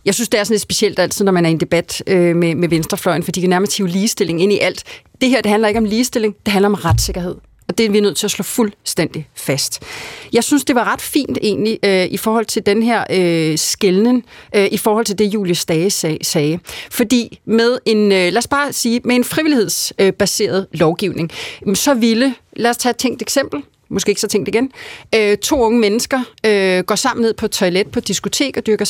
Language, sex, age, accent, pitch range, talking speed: Danish, female, 30-49, native, 185-235 Hz, 220 wpm